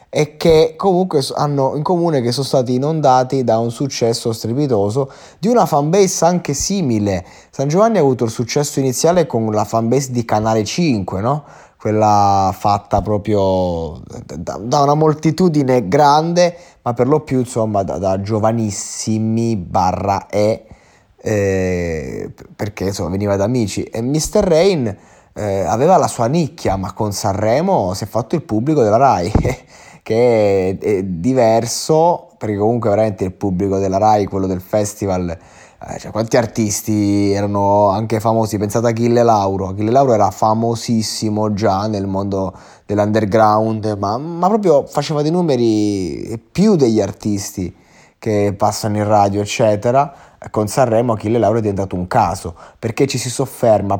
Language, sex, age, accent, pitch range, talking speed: Italian, male, 20-39, native, 100-135 Hz, 145 wpm